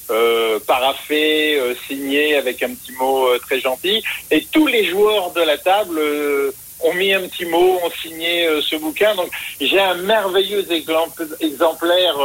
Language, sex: French, male